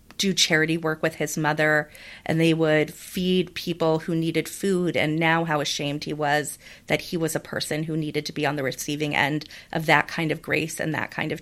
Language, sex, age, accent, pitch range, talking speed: English, female, 30-49, American, 150-175 Hz, 220 wpm